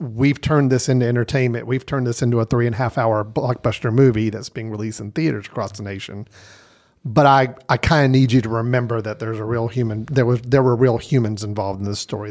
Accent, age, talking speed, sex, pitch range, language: American, 40-59, 240 wpm, male, 115-145 Hz, English